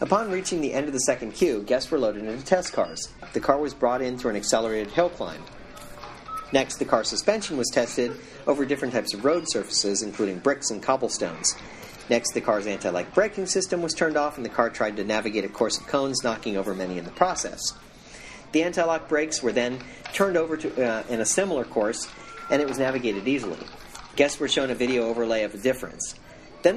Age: 40-59